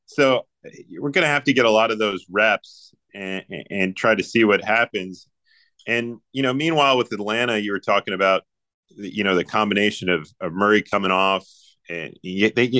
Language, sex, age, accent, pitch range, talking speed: English, male, 30-49, American, 100-125 Hz, 190 wpm